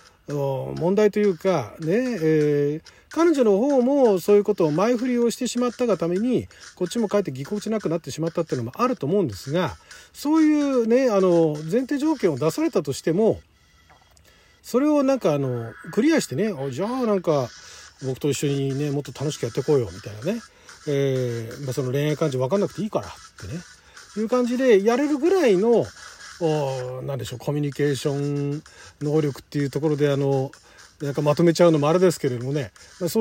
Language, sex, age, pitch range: Japanese, male, 40-59, 145-230 Hz